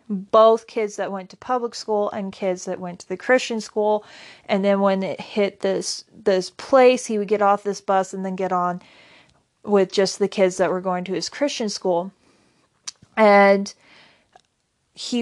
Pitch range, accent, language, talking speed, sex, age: 190-225 Hz, American, English, 180 wpm, female, 40-59